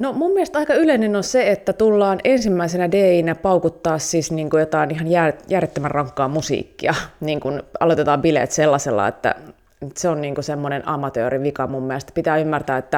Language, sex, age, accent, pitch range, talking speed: Finnish, female, 30-49, native, 140-175 Hz, 165 wpm